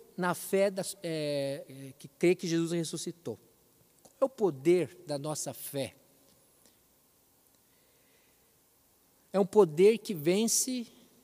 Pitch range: 155-210 Hz